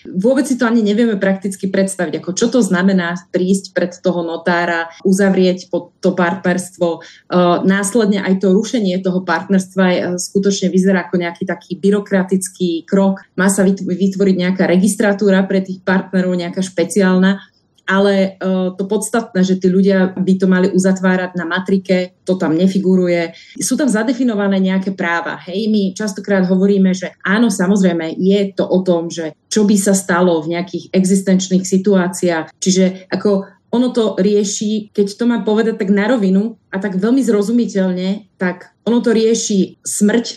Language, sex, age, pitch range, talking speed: Slovak, female, 30-49, 185-205 Hz, 160 wpm